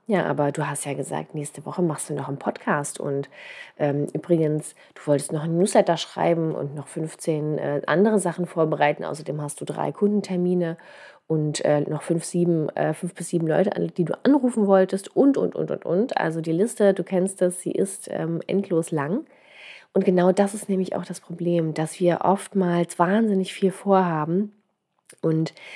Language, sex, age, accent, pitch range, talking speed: German, female, 30-49, German, 160-195 Hz, 185 wpm